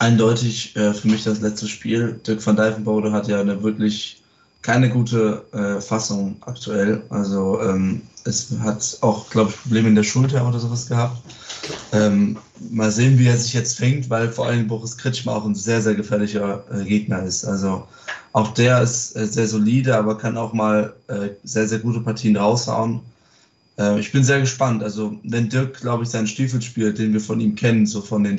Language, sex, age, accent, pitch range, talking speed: German, male, 20-39, German, 105-120 Hz, 195 wpm